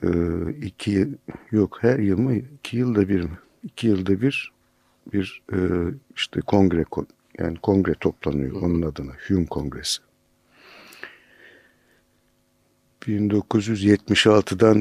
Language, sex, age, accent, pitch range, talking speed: Turkish, male, 60-79, native, 85-110 Hz, 90 wpm